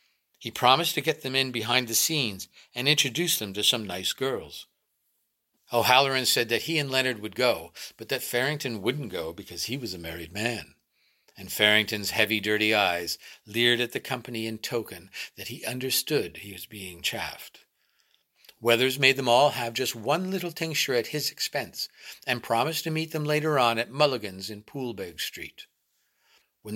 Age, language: 60-79, English